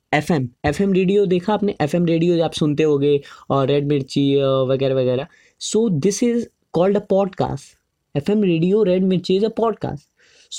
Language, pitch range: Hindi, 155-195 Hz